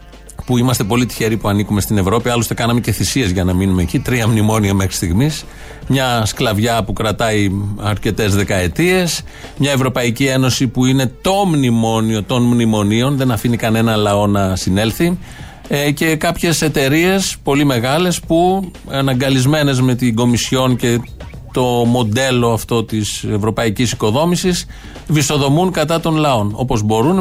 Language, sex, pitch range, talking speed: Greek, male, 115-160 Hz, 145 wpm